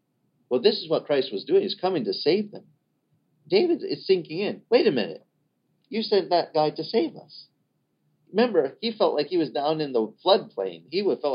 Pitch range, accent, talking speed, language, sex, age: 110-180 Hz, American, 200 wpm, English, male, 40-59